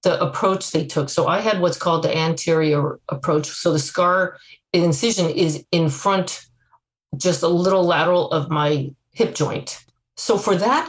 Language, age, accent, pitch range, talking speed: English, 40-59, American, 160-195 Hz, 165 wpm